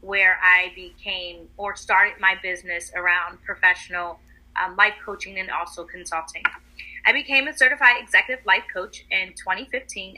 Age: 30-49